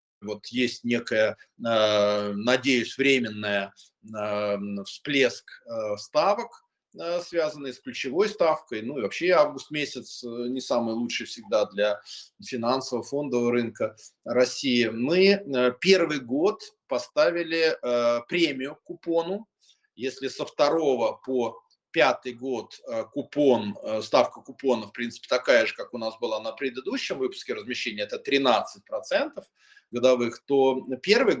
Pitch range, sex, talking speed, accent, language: 115-170 Hz, male, 110 wpm, native, Russian